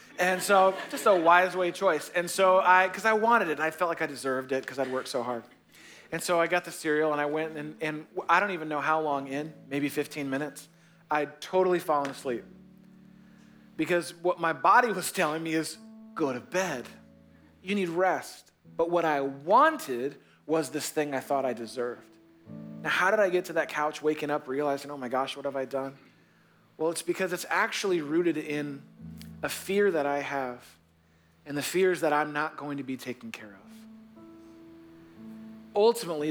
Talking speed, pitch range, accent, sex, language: 195 wpm, 140-180 Hz, American, male, English